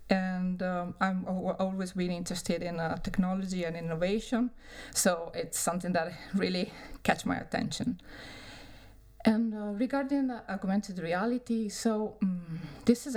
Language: Danish